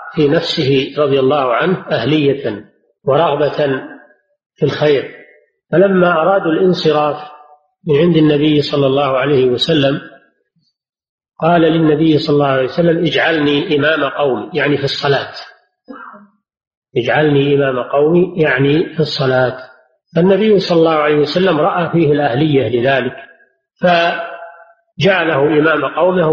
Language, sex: Arabic, male